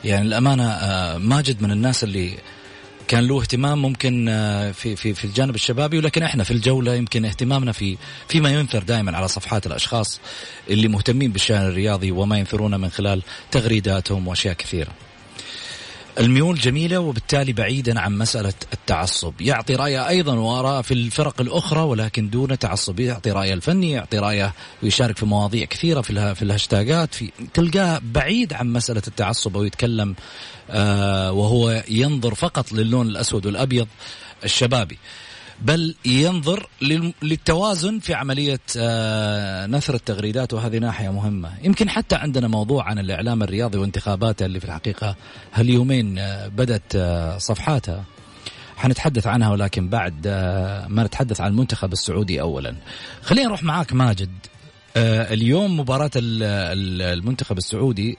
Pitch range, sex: 100-130 Hz, male